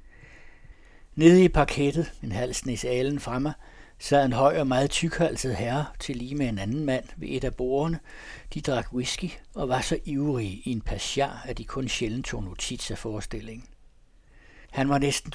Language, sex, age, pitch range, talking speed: Danish, male, 60-79, 110-145 Hz, 170 wpm